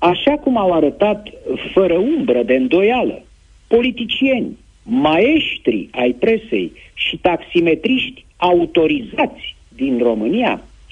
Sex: male